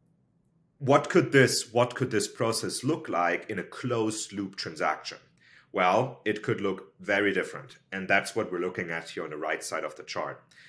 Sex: male